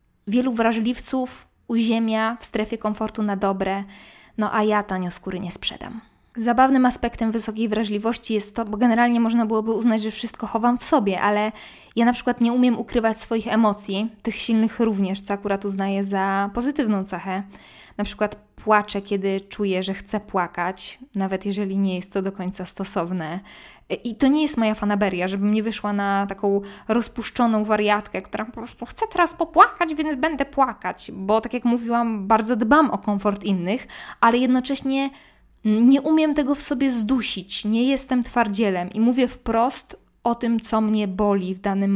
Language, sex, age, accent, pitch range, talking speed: Polish, female, 20-39, native, 200-240 Hz, 165 wpm